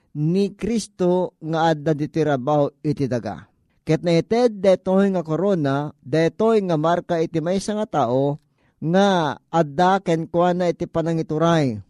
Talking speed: 135 wpm